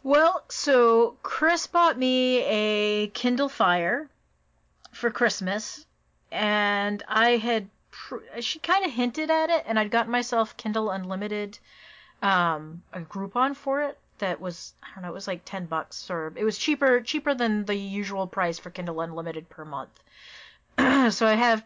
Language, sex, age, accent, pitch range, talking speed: English, female, 30-49, American, 175-220 Hz, 160 wpm